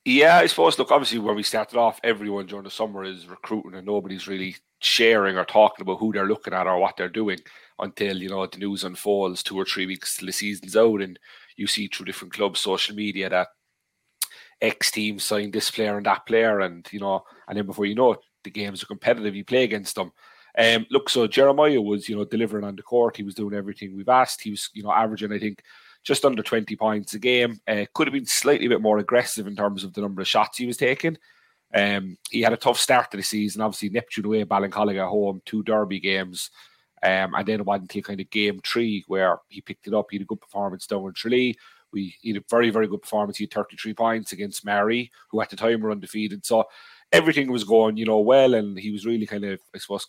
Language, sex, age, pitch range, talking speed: English, male, 30-49, 100-110 Hz, 240 wpm